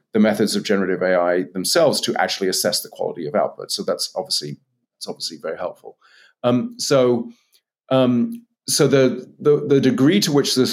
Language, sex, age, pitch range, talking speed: English, male, 40-59, 100-130 Hz, 175 wpm